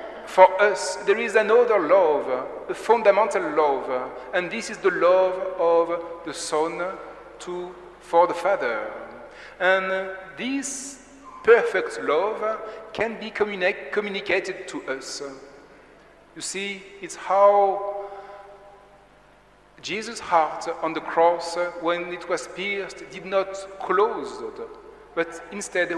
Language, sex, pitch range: English, male, 170-210 Hz